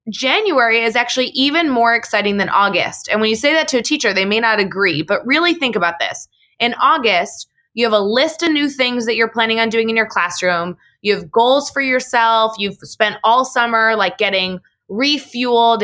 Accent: American